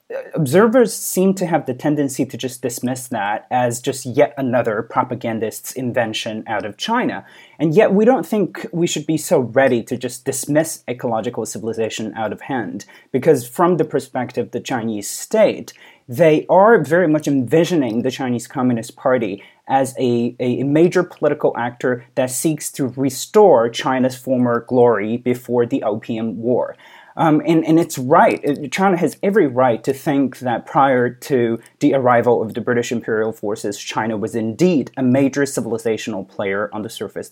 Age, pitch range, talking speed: 30-49, 120-165 Hz, 165 wpm